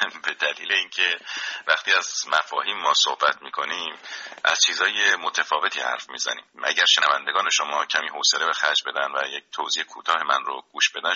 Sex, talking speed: male, 160 wpm